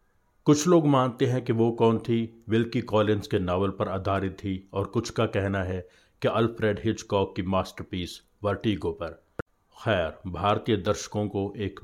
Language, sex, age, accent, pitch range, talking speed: Hindi, male, 50-69, native, 95-110 Hz, 160 wpm